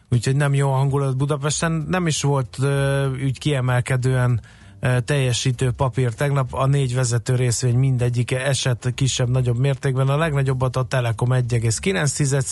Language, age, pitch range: Hungarian, 30-49, 125-140 Hz